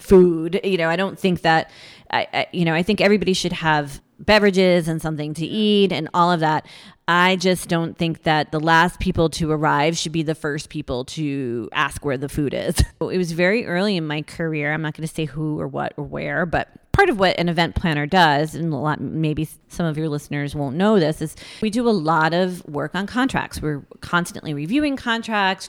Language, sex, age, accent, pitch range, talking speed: English, female, 30-49, American, 155-185 Hz, 215 wpm